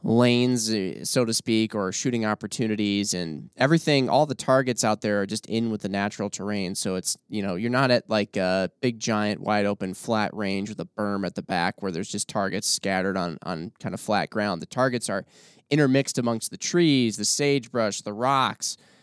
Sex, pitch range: male, 105-135 Hz